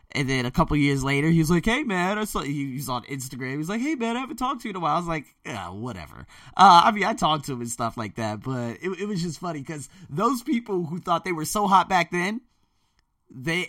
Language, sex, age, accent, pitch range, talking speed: English, male, 20-39, American, 115-175 Hz, 260 wpm